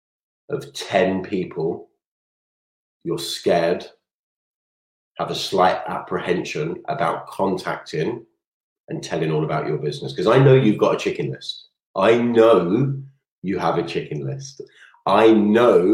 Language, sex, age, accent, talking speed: English, male, 30-49, British, 130 wpm